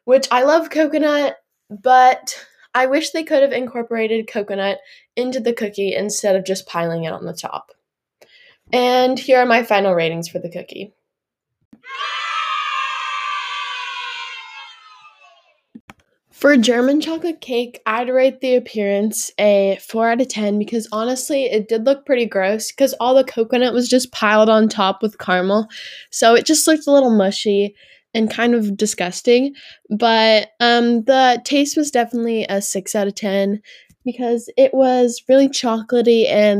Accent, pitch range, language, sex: American, 205-260 Hz, English, female